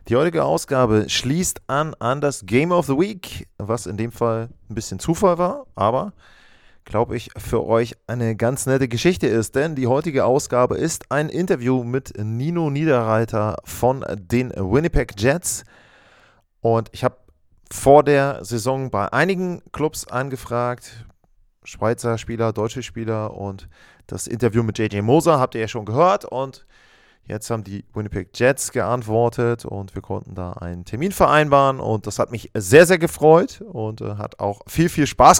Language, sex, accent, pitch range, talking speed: German, male, German, 110-140 Hz, 160 wpm